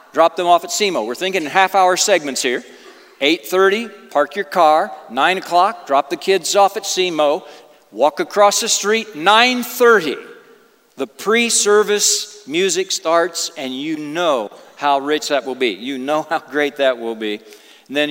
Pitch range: 135-195 Hz